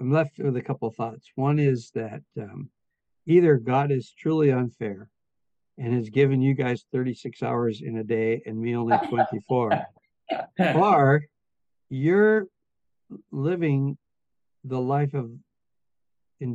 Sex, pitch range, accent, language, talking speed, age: male, 115-140 Hz, American, English, 135 wpm, 60-79